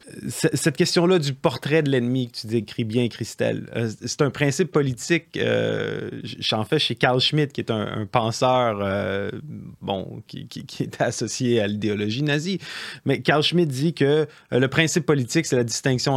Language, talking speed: French, 175 wpm